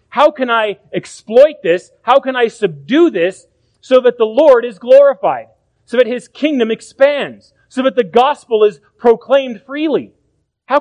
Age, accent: 30-49, American